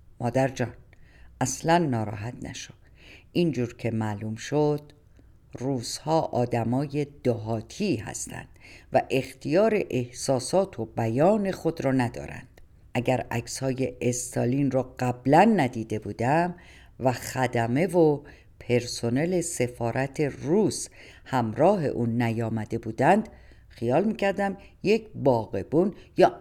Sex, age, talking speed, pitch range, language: female, 50-69, 95 wpm, 115-155 Hz, Persian